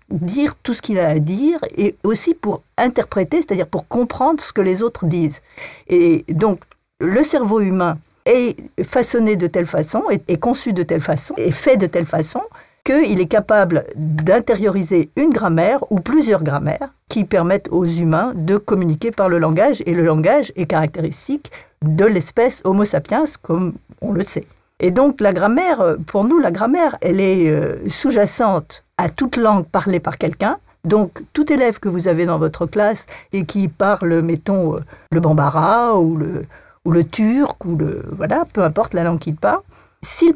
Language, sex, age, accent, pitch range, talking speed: French, female, 50-69, French, 170-240 Hz, 175 wpm